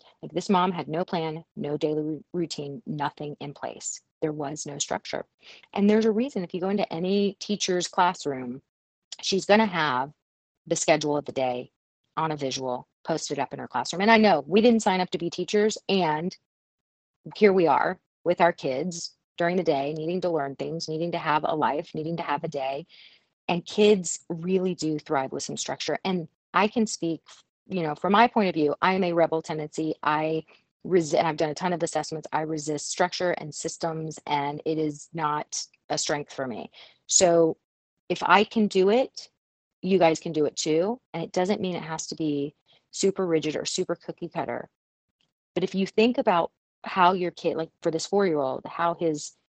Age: 40-59